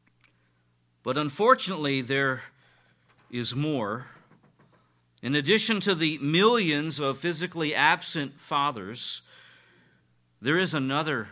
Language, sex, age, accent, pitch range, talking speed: English, male, 50-69, American, 105-165 Hz, 90 wpm